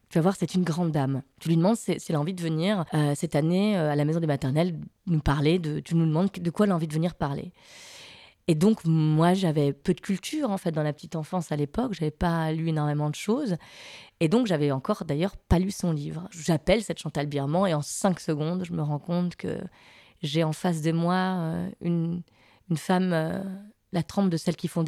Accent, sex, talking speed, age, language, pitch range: French, female, 240 wpm, 20-39, French, 155-190 Hz